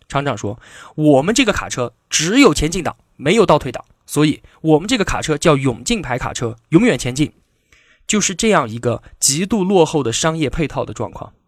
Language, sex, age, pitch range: Chinese, male, 20-39, 120-175 Hz